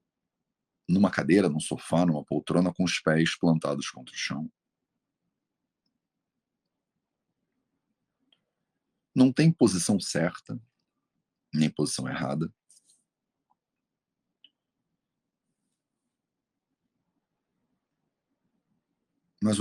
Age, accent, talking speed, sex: 50-69, Brazilian, 65 wpm, male